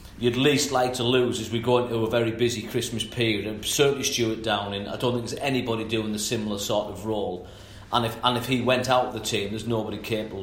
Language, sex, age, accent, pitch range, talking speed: English, male, 40-59, British, 110-125 Hz, 240 wpm